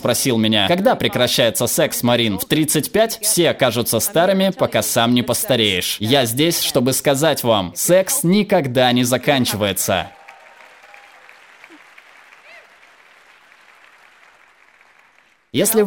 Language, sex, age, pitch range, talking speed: Russian, male, 20-39, 125-165 Hz, 95 wpm